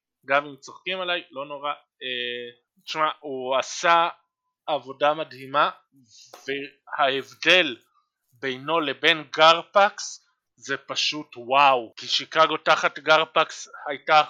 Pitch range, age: 135-165 Hz, 20-39